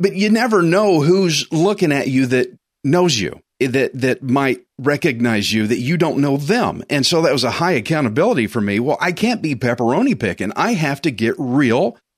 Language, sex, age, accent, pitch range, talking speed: English, male, 40-59, American, 120-175 Hz, 200 wpm